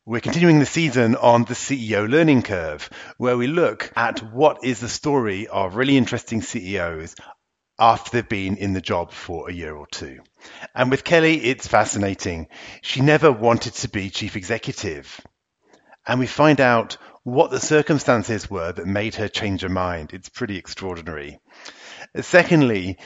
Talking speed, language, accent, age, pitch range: 160 wpm, English, British, 40-59, 100-135 Hz